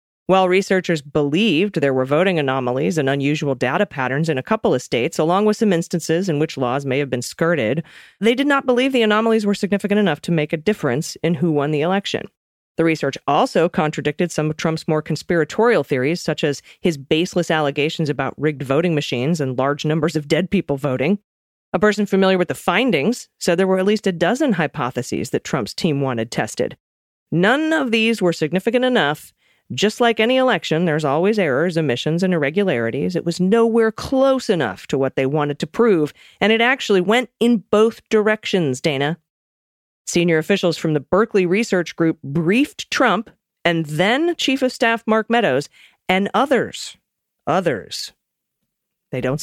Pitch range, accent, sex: 150-210 Hz, American, female